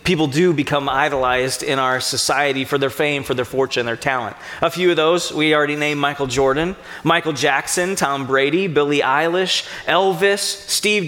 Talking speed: 180 wpm